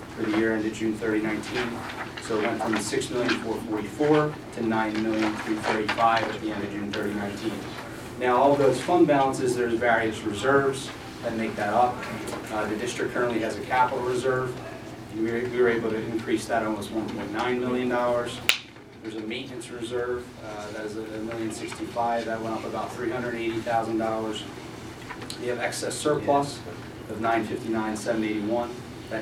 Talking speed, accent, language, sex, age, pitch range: 145 wpm, American, English, male, 30-49, 110-120 Hz